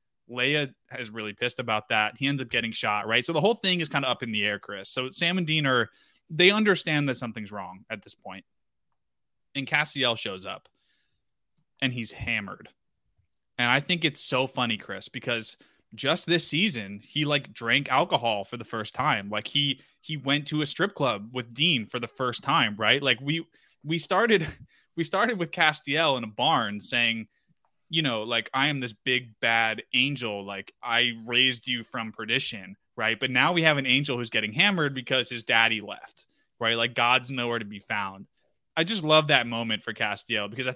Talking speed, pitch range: 200 wpm, 115-155 Hz